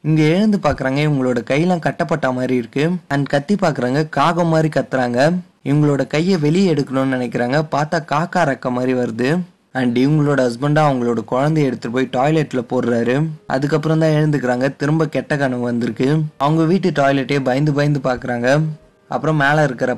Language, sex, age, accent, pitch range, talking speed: Tamil, male, 20-39, native, 125-150 Hz, 145 wpm